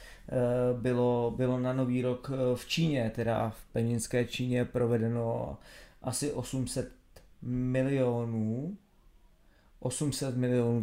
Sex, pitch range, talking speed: male, 115-130 Hz, 95 wpm